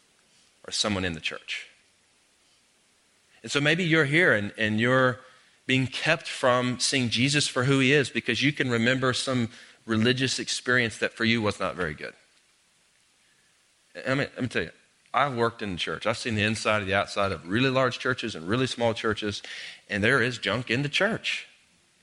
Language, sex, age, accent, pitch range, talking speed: English, male, 40-59, American, 110-160 Hz, 190 wpm